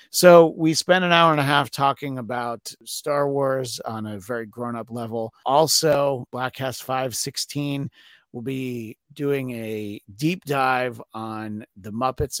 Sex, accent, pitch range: male, American, 110-150 Hz